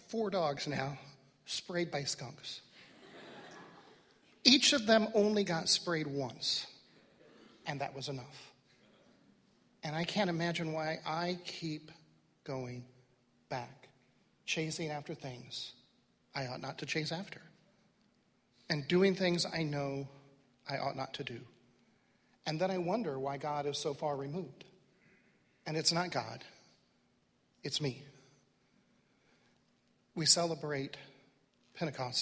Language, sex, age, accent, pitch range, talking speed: English, male, 40-59, American, 135-165 Hz, 120 wpm